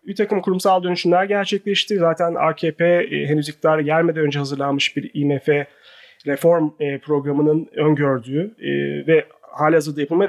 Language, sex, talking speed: Turkish, male, 115 wpm